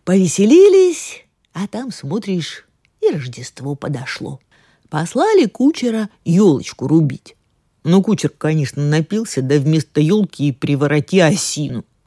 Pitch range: 145-200 Hz